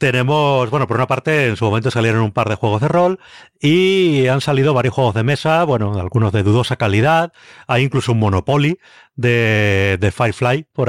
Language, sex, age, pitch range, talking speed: Spanish, male, 30-49, 115-150 Hz, 195 wpm